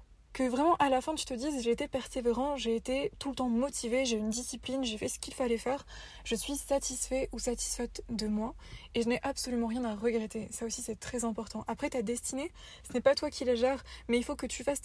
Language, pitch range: French, 230-270 Hz